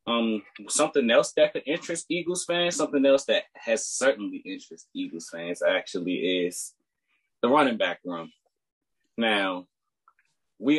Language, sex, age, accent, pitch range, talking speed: English, male, 20-39, American, 105-160 Hz, 135 wpm